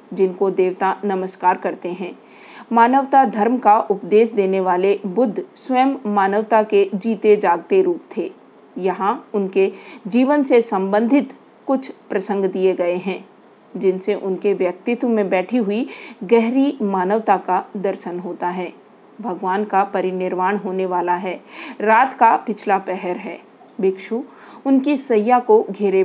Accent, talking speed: native, 130 wpm